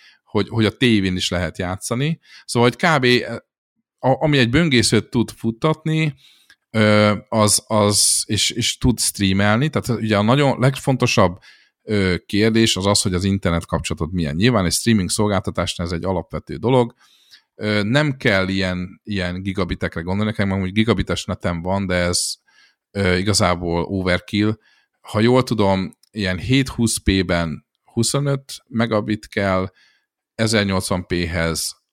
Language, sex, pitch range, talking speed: Hungarian, male, 90-115 Hz, 125 wpm